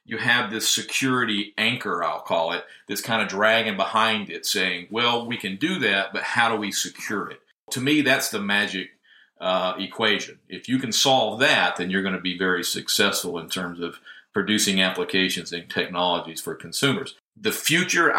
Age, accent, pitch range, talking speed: 50-69, American, 95-115 Hz, 185 wpm